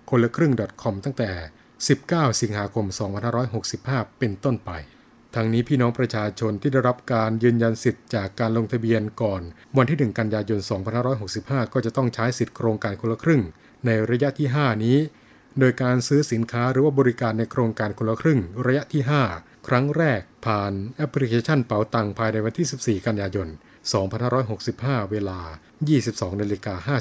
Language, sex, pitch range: Thai, male, 110-130 Hz